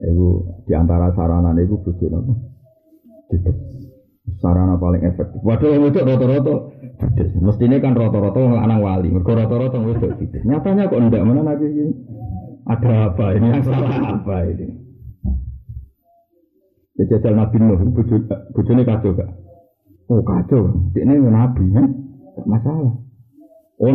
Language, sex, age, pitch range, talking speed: Malay, male, 50-69, 100-135 Hz, 120 wpm